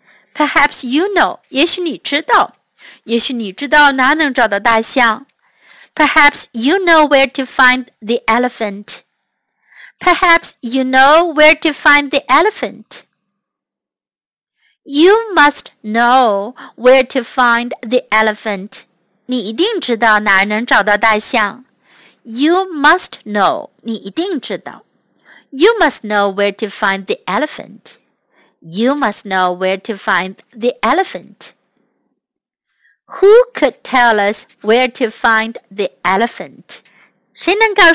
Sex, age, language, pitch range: female, 50-69, Chinese, 215-290 Hz